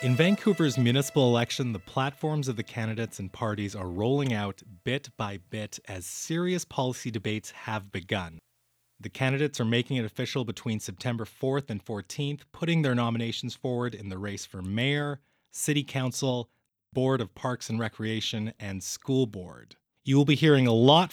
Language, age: English, 30-49